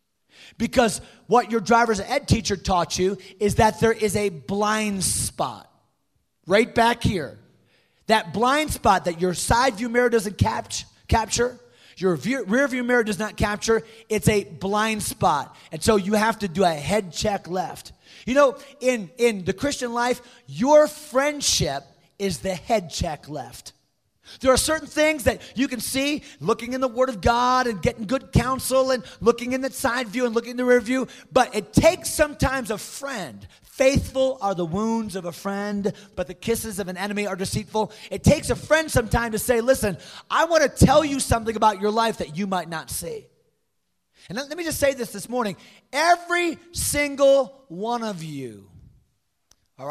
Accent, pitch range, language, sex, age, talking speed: American, 195-260 Hz, English, male, 30-49, 180 wpm